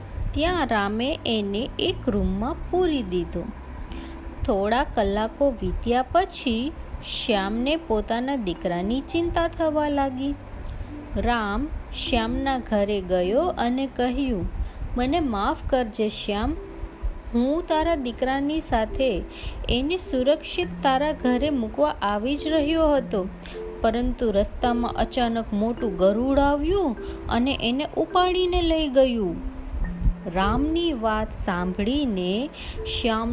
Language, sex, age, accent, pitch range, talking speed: Gujarati, female, 20-39, native, 195-280 Hz, 80 wpm